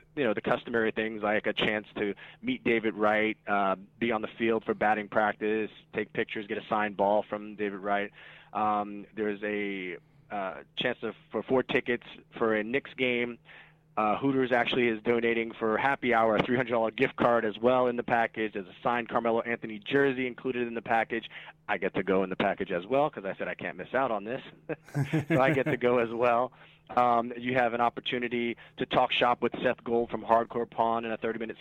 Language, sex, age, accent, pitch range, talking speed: English, male, 30-49, American, 110-125 Hz, 215 wpm